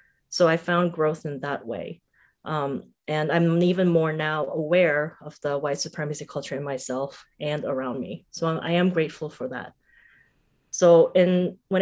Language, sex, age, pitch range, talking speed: English, female, 30-49, 150-185 Hz, 160 wpm